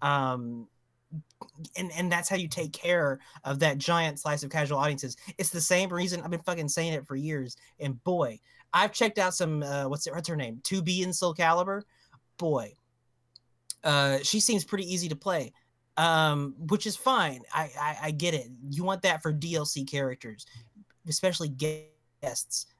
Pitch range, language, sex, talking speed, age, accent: 140-185 Hz, English, male, 175 wpm, 20-39, American